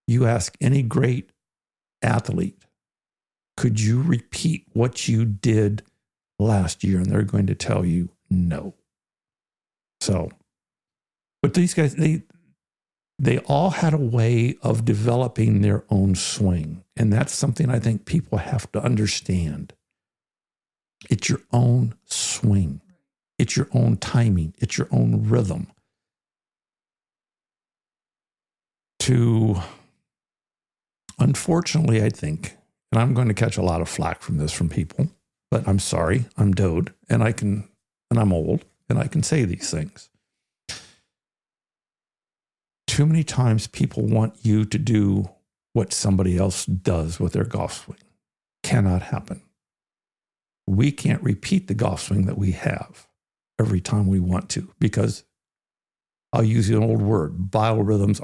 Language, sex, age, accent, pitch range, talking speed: English, male, 60-79, American, 95-125 Hz, 135 wpm